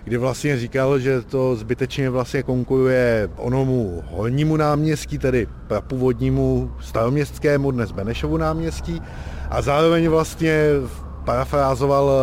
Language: Czech